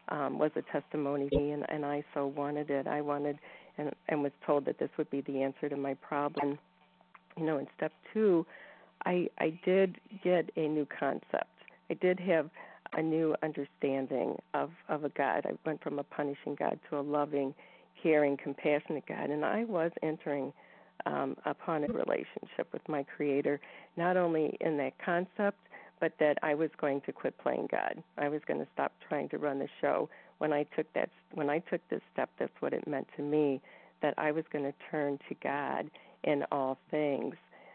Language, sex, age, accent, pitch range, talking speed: English, female, 50-69, American, 145-160 Hz, 190 wpm